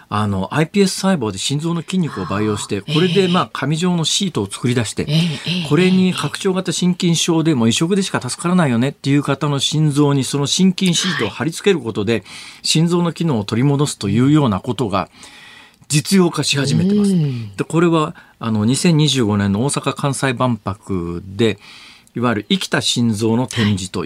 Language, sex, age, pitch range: Japanese, male, 40-59, 110-175 Hz